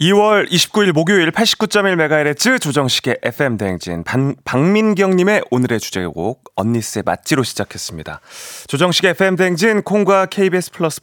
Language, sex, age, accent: Korean, male, 30-49, native